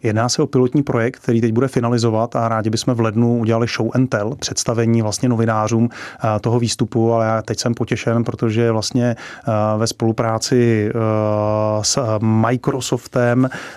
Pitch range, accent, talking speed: 115-130 Hz, native, 150 wpm